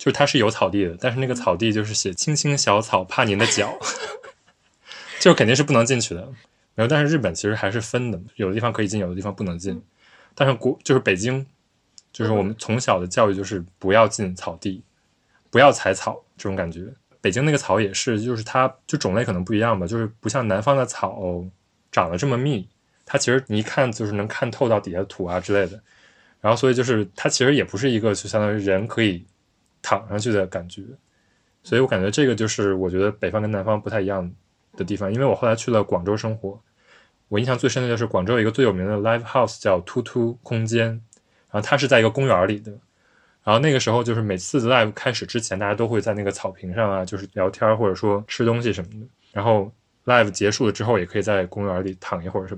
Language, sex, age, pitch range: Chinese, male, 20-39, 100-125 Hz